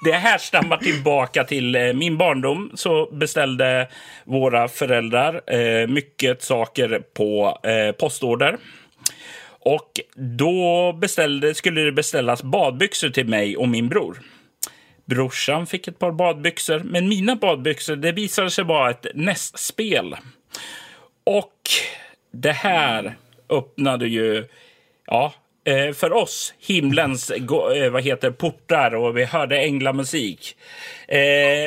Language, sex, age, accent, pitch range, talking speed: Swedish, male, 40-59, native, 135-190 Hz, 110 wpm